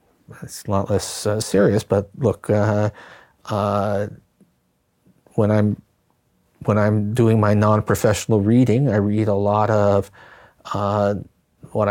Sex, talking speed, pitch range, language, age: male, 130 wpm, 100-125 Hz, Hungarian, 50-69